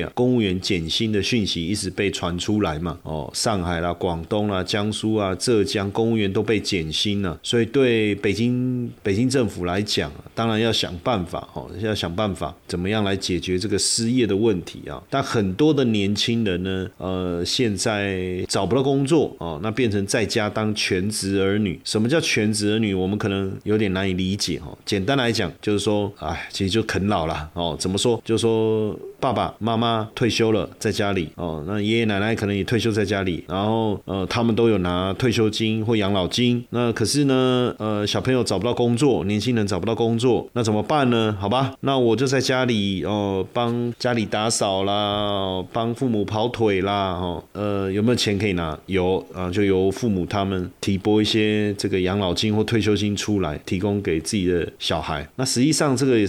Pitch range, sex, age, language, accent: 95-115 Hz, male, 30-49, Chinese, native